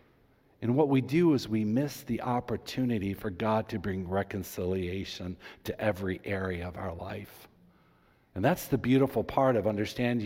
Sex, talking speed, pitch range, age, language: male, 160 wpm, 105-140 Hz, 50-69, English